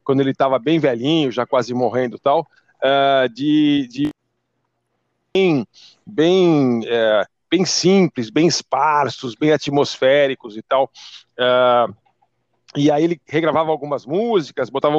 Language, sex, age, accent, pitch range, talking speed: Portuguese, male, 50-69, Brazilian, 130-160 Hz, 110 wpm